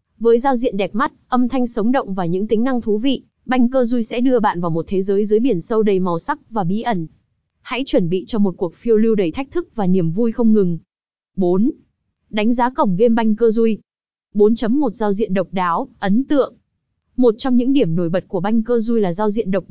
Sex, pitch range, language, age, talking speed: female, 200-250 Hz, Vietnamese, 20-39, 240 wpm